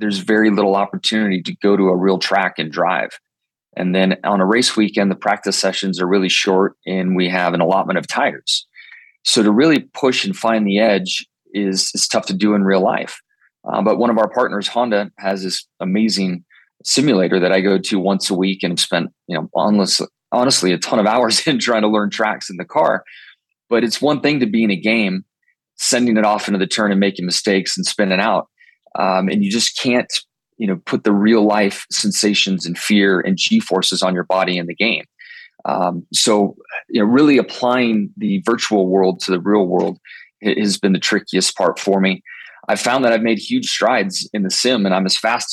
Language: English